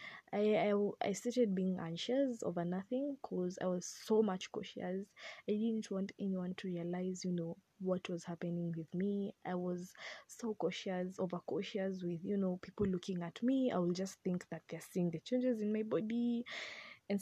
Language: English